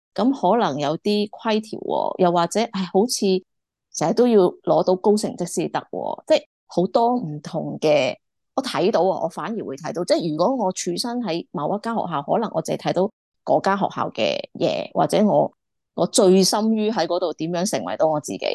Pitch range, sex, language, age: 165-210 Hz, female, Chinese, 20-39